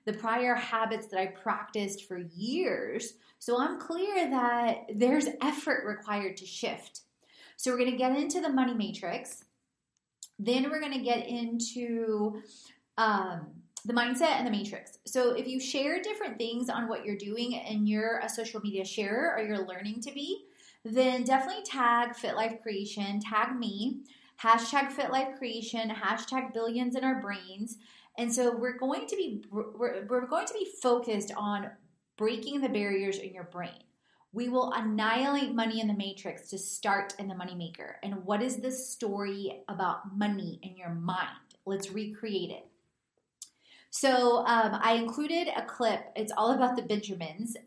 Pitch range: 210-255 Hz